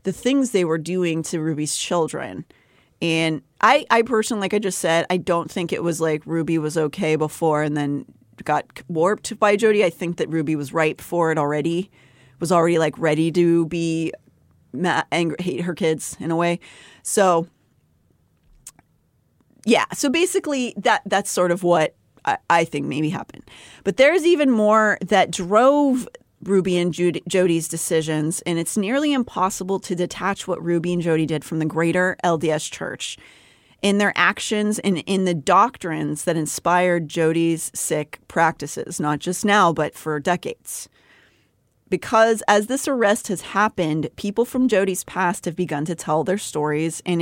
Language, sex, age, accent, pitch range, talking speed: English, female, 30-49, American, 160-195 Hz, 165 wpm